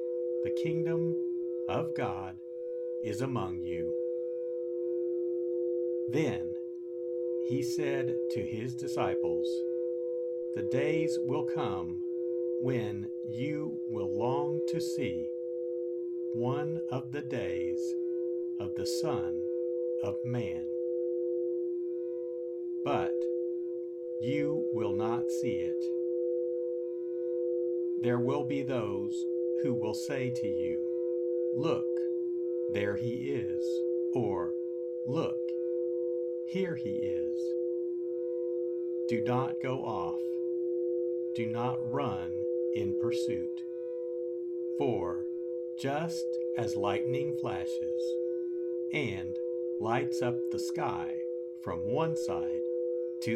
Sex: male